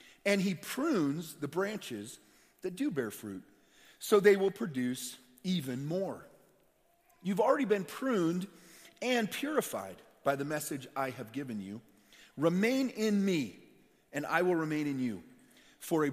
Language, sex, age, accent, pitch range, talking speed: English, male, 40-59, American, 125-190 Hz, 145 wpm